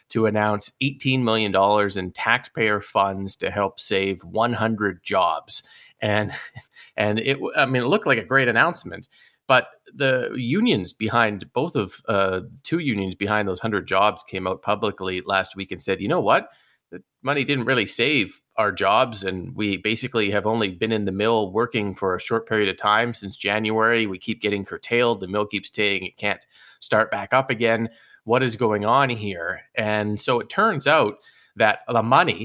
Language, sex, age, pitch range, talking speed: English, male, 30-49, 100-115 Hz, 185 wpm